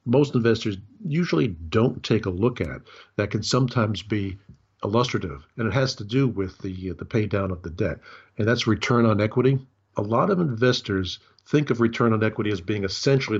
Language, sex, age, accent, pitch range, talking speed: English, male, 50-69, American, 100-125 Hz, 195 wpm